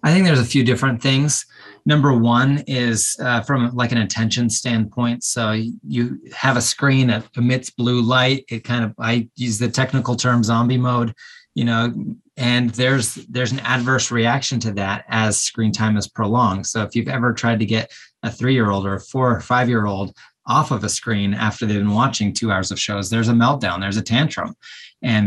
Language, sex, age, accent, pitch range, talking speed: English, male, 30-49, American, 105-125 Hz, 195 wpm